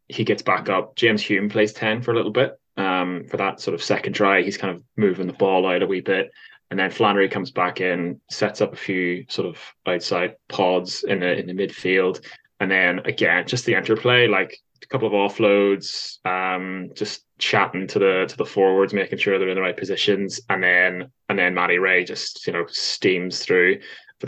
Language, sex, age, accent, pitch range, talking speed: English, male, 20-39, British, 90-105 Hz, 210 wpm